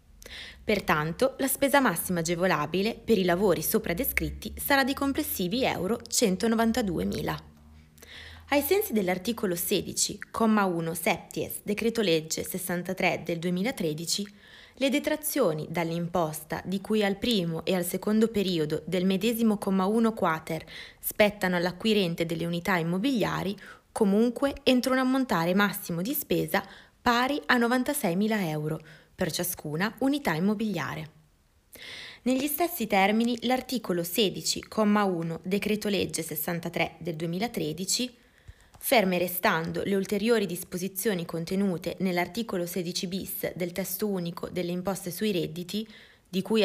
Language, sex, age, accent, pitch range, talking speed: Italian, female, 20-39, native, 170-225 Hz, 110 wpm